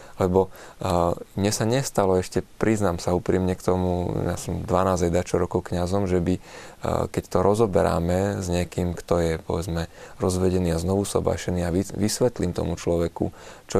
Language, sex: Slovak, male